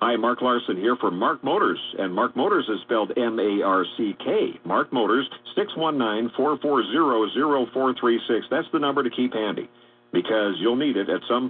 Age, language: 50-69, English